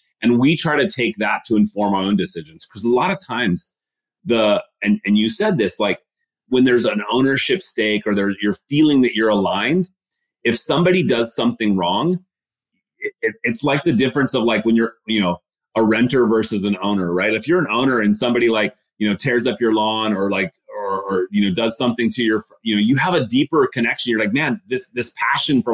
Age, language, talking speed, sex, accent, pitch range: 30-49, English, 220 wpm, male, American, 100-125 Hz